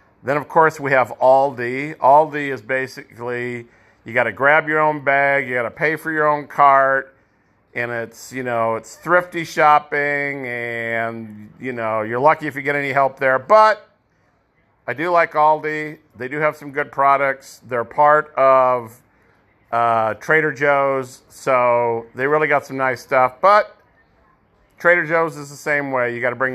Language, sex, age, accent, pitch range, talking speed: English, male, 50-69, American, 115-150 Hz, 175 wpm